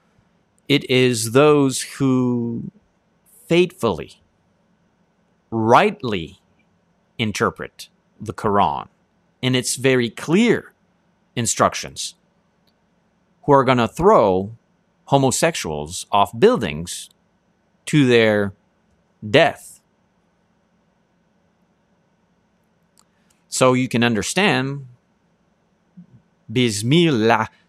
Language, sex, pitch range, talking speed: English, male, 120-190 Hz, 65 wpm